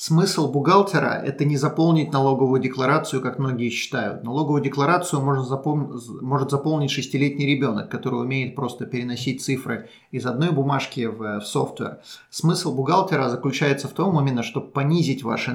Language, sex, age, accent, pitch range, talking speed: Russian, male, 30-49, native, 120-145 Hz, 145 wpm